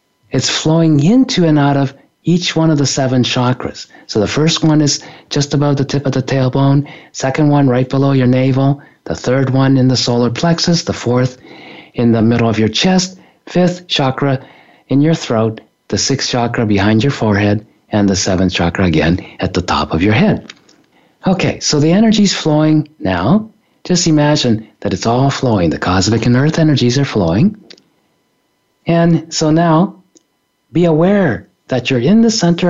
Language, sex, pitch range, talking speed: English, male, 120-165 Hz, 180 wpm